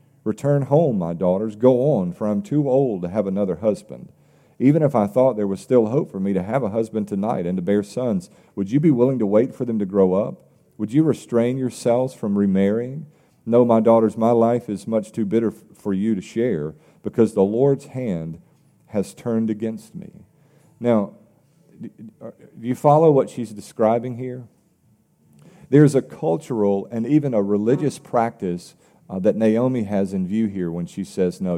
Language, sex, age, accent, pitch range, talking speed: English, male, 40-59, American, 100-130 Hz, 185 wpm